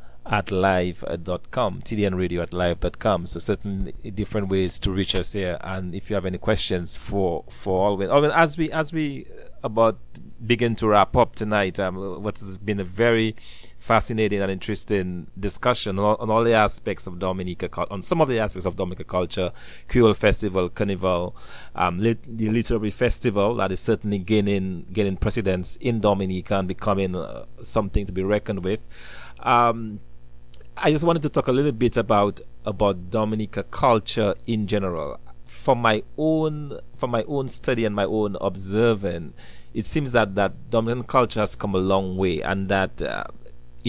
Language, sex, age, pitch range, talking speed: English, male, 30-49, 95-115 Hz, 175 wpm